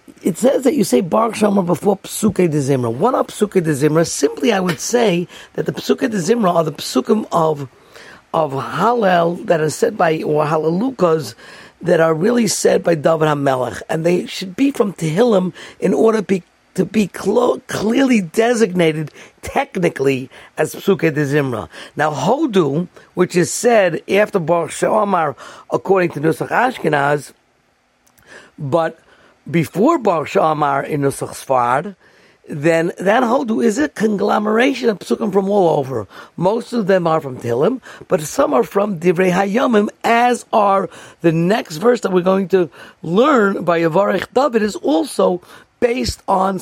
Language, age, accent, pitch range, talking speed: English, 50-69, American, 160-215 Hz, 150 wpm